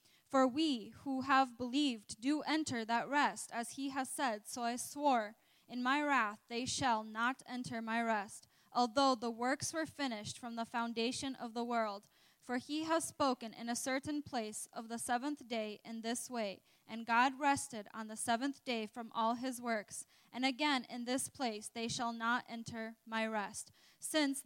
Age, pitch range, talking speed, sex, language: 10-29, 230-270 Hz, 180 wpm, female, English